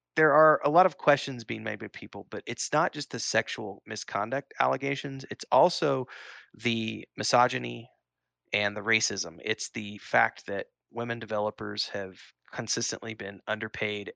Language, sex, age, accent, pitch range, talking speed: English, male, 30-49, American, 105-125 Hz, 150 wpm